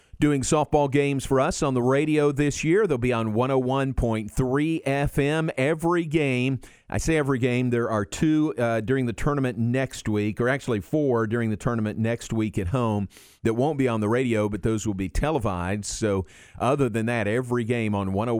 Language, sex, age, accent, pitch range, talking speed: English, male, 40-59, American, 100-130 Hz, 190 wpm